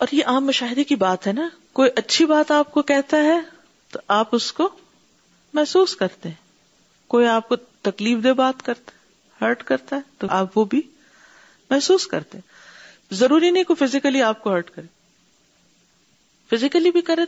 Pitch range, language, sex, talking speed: 190-285 Hz, Urdu, female, 170 wpm